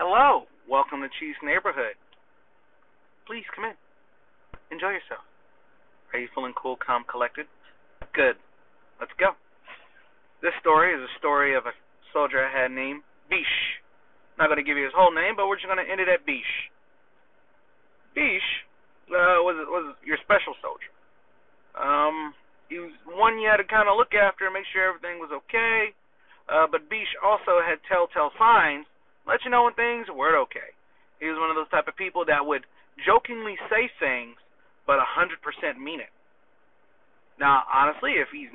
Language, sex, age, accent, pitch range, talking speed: English, male, 30-49, American, 150-225 Hz, 165 wpm